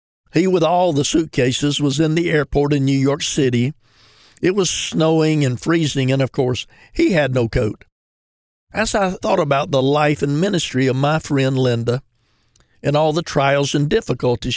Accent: American